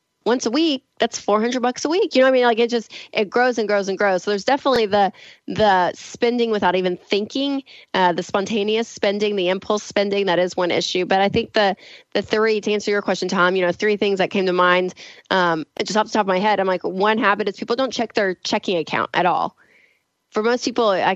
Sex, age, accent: female, 20-39, American